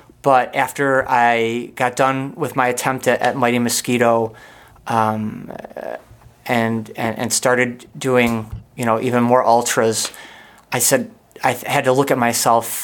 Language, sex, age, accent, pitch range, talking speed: English, male, 30-49, American, 120-145 Hz, 145 wpm